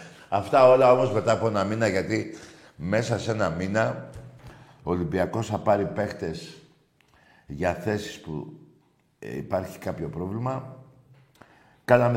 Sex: male